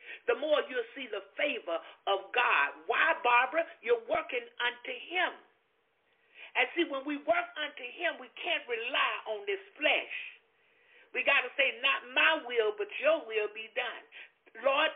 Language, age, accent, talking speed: English, 50-69, American, 160 wpm